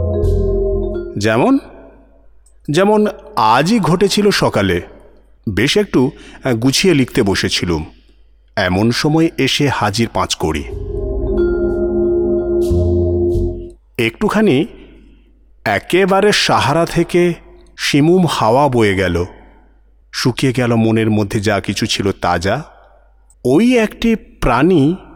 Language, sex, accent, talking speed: Bengali, male, native, 85 wpm